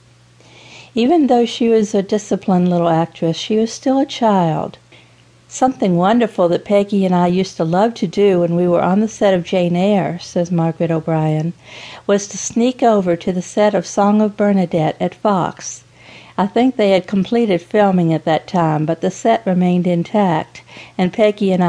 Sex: female